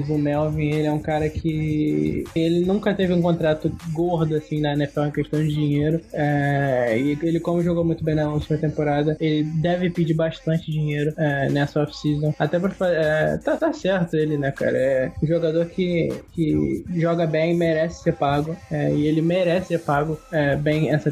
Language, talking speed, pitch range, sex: Portuguese, 190 wpm, 145-160 Hz, male